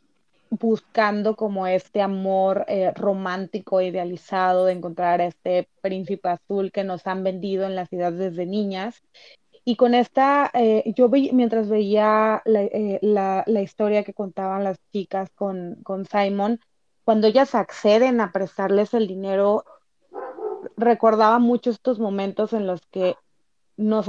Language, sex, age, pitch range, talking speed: Spanish, female, 30-49, 185-215 Hz, 140 wpm